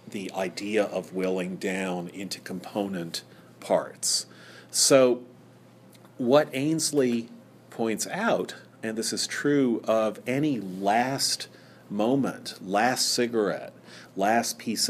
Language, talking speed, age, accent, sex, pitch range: English, 100 wpm, 40-59, American, male, 100-145 Hz